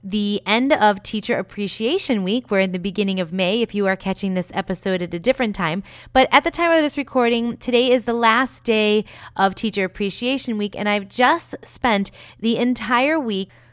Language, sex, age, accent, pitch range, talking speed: English, female, 30-49, American, 195-255 Hz, 195 wpm